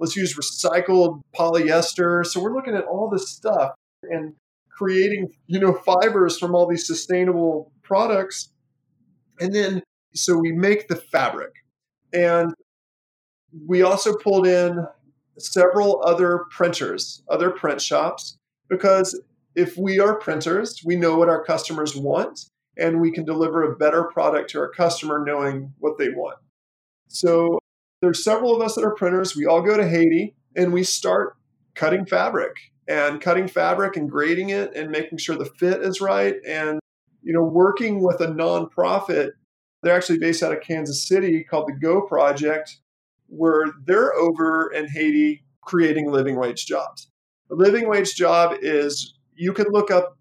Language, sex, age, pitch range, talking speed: English, male, 40-59, 150-185 Hz, 155 wpm